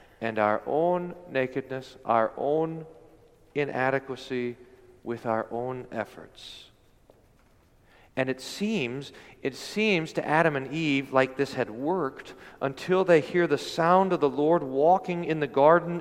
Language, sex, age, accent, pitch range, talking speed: English, male, 40-59, American, 120-175 Hz, 135 wpm